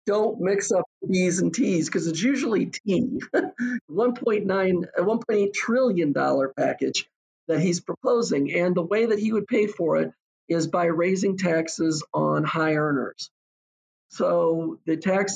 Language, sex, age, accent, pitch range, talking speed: English, male, 50-69, American, 145-170 Hz, 140 wpm